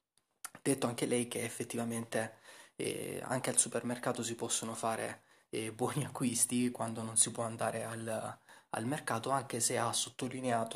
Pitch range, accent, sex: 110-125 Hz, native, male